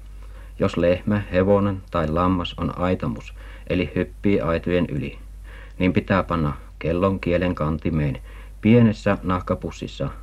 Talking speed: 110 wpm